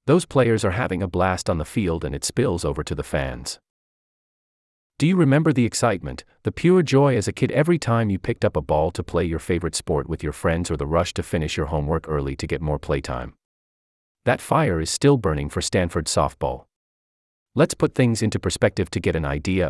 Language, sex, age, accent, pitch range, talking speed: English, male, 30-49, American, 75-120 Hz, 215 wpm